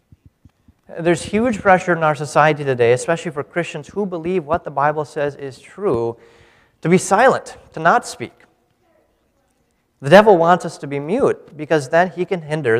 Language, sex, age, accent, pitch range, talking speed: English, male, 30-49, American, 140-185 Hz, 170 wpm